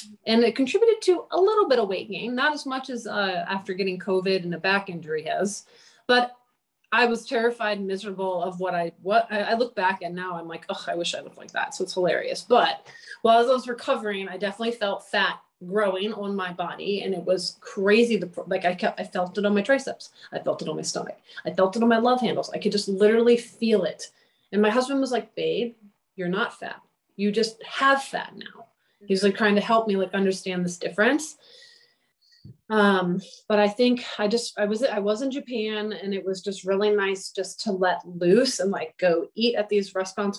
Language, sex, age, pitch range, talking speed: English, female, 30-49, 185-230 Hz, 220 wpm